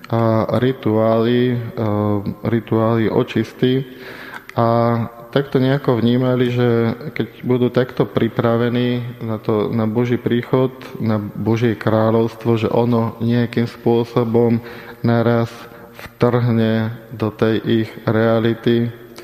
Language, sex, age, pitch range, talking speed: Slovak, male, 20-39, 110-120 Hz, 95 wpm